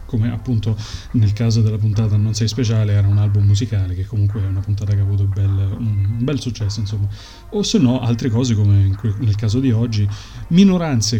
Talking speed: 195 wpm